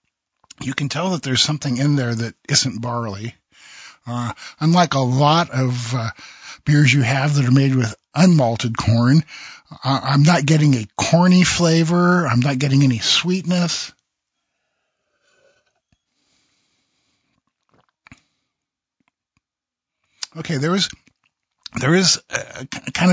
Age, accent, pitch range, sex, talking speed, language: 50-69, American, 120-160 Hz, male, 110 wpm, English